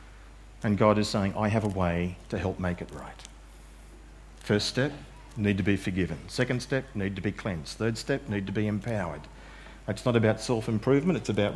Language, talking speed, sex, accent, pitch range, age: English, 190 wpm, male, Australian, 100-130 Hz, 50-69